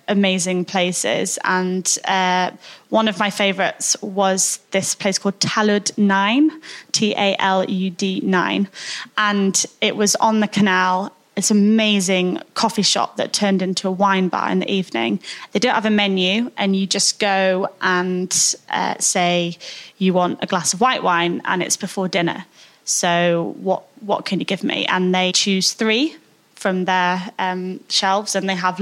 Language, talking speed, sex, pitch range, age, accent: English, 170 wpm, female, 185-210 Hz, 20-39, British